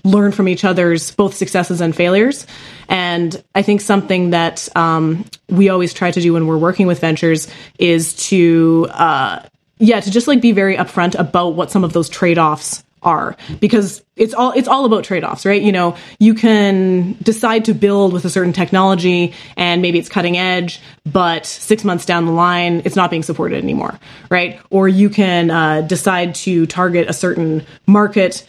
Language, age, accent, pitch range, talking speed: English, 20-39, American, 170-200 Hz, 185 wpm